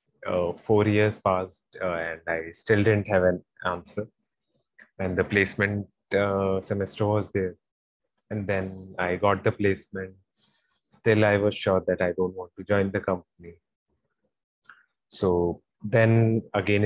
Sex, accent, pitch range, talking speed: male, Indian, 95-110 Hz, 140 wpm